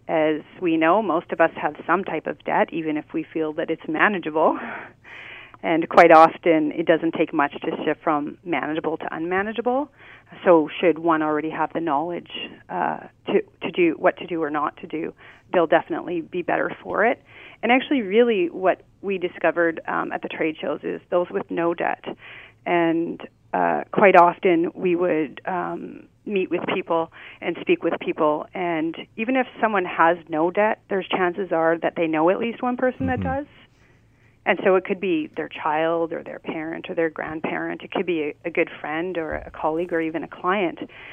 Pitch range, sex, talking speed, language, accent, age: 160-210 Hz, female, 190 wpm, English, American, 30-49